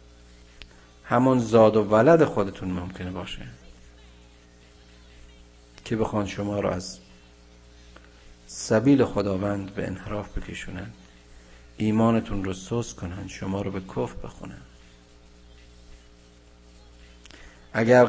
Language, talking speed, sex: Persian, 90 wpm, male